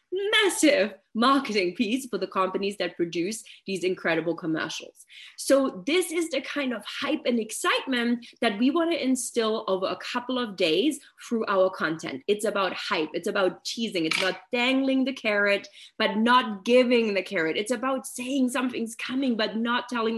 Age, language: 20-39, English